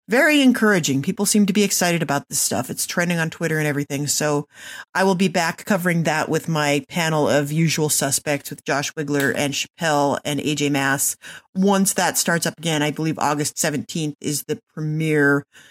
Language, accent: English, American